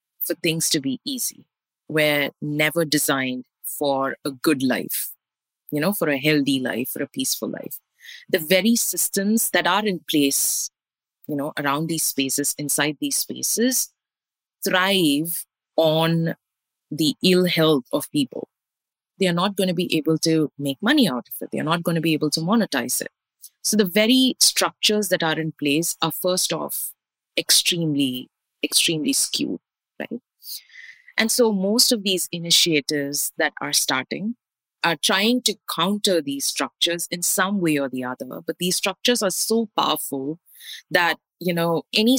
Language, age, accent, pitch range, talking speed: English, 30-49, Indian, 150-200 Hz, 160 wpm